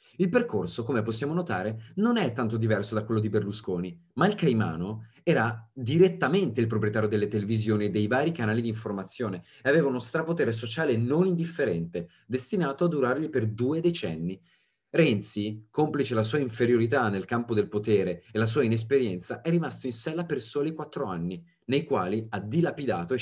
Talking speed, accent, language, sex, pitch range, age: 175 wpm, native, Italian, male, 105-155 Hz, 30-49